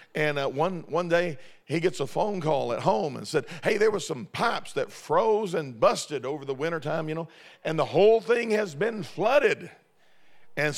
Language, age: English, 50-69